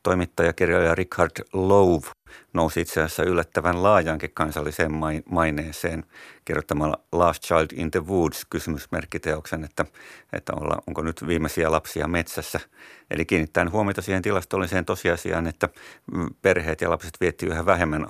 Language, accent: Finnish, native